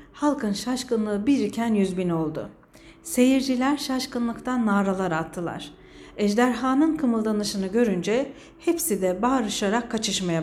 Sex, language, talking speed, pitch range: female, Turkish, 90 wpm, 190-265 Hz